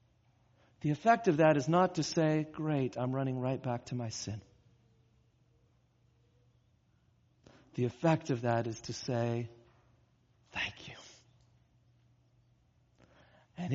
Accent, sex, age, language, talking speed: American, male, 40-59, English, 115 wpm